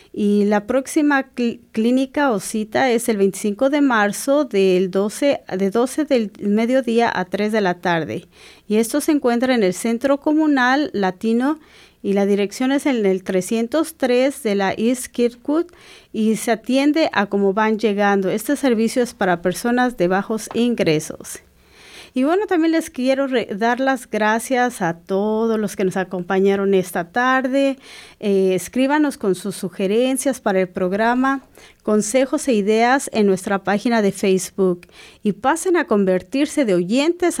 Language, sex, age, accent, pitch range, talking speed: English, female, 40-59, American, 195-265 Hz, 150 wpm